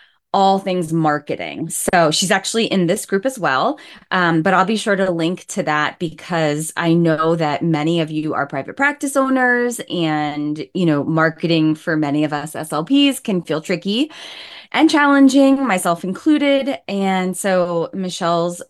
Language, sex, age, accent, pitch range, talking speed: English, female, 20-39, American, 155-205 Hz, 160 wpm